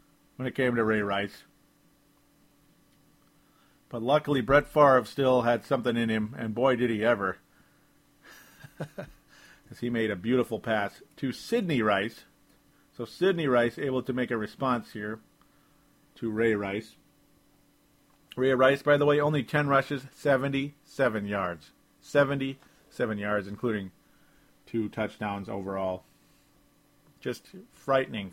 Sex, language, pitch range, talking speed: male, English, 110-140 Hz, 125 wpm